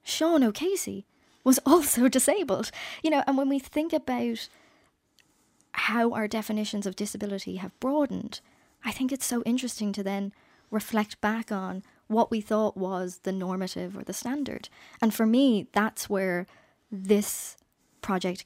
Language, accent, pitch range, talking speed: English, British, 185-230 Hz, 145 wpm